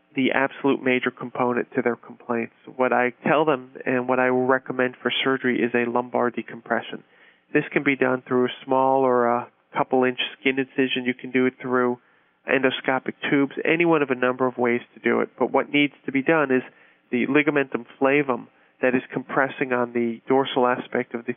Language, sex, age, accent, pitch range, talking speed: English, male, 40-59, American, 120-135 Hz, 200 wpm